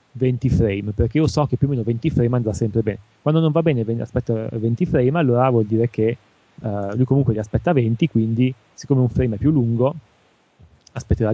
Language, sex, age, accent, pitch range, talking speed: Italian, male, 30-49, native, 110-130 Hz, 205 wpm